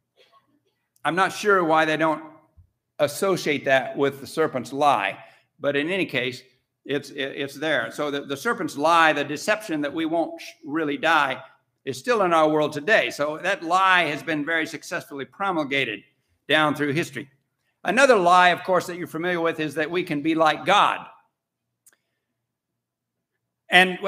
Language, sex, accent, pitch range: English, male, American, 145-195 Hz